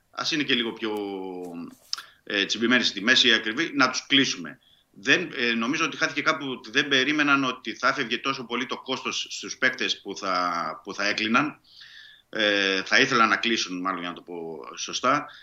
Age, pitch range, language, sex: 30-49, 100-125 Hz, Greek, male